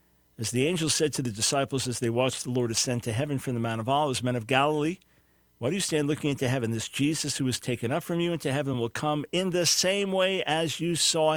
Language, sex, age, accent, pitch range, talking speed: English, male, 50-69, American, 115-150 Hz, 260 wpm